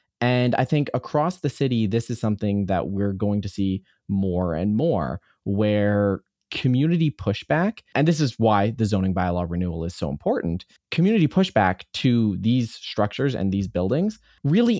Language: English